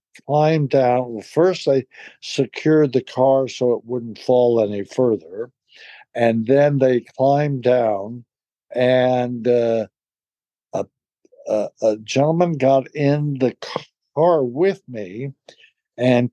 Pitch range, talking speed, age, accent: 115-145 Hz, 120 wpm, 60-79, American